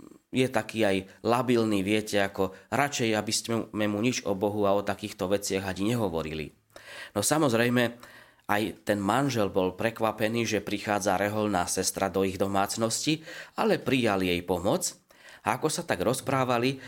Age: 20-39